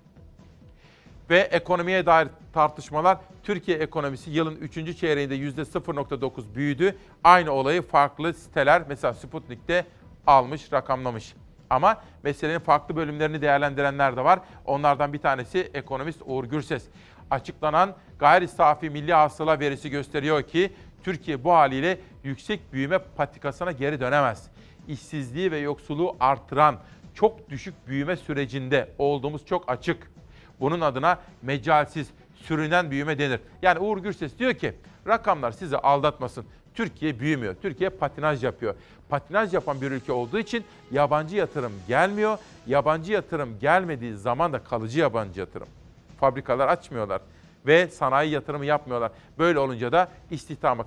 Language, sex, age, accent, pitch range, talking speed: Turkish, male, 40-59, native, 140-175 Hz, 125 wpm